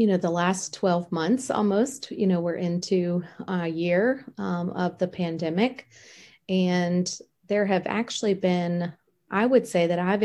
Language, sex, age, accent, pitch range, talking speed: English, female, 30-49, American, 170-200 Hz, 160 wpm